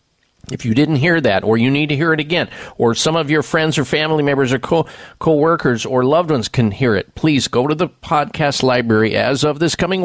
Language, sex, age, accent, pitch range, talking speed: English, male, 50-69, American, 115-155 Hz, 225 wpm